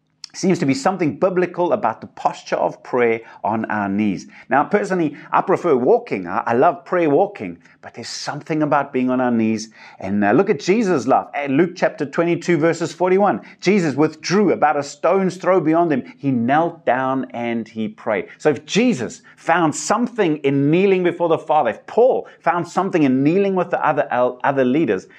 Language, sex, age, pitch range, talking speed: English, male, 30-49, 130-185 Hz, 185 wpm